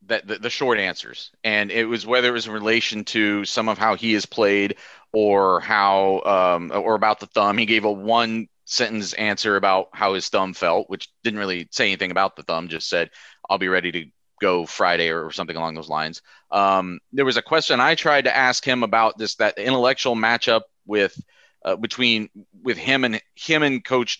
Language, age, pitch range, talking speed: English, 30-49, 100-130 Hz, 205 wpm